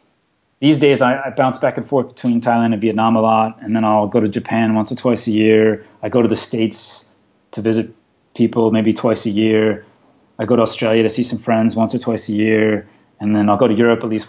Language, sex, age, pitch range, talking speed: English, male, 30-49, 110-130 Hz, 245 wpm